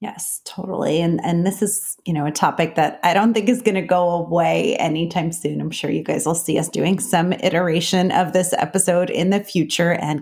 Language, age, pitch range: English, 30-49, 160-195 Hz